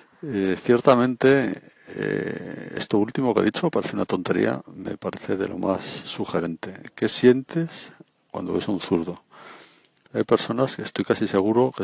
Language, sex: Spanish, male